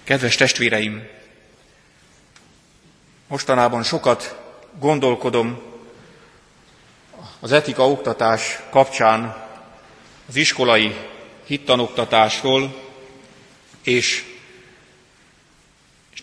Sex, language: male, Hungarian